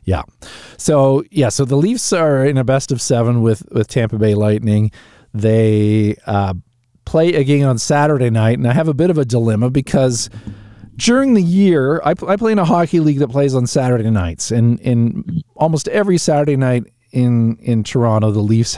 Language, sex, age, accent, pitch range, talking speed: English, male, 40-59, American, 115-150 Hz, 190 wpm